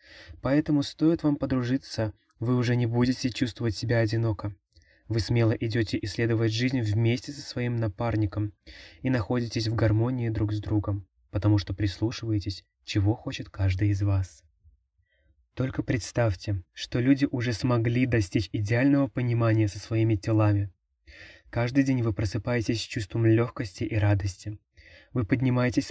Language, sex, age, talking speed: Russian, male, 20-39, 135 wpm